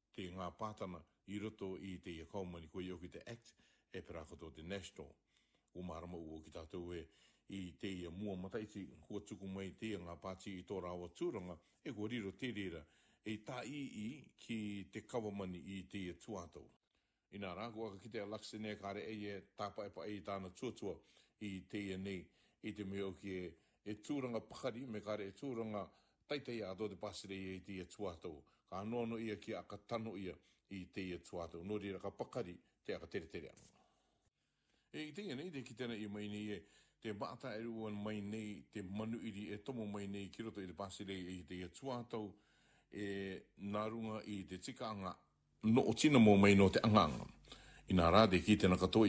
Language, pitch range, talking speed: English, 95-110 Hz, 185 wpm